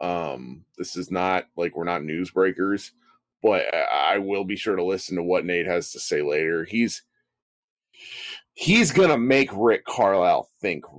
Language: English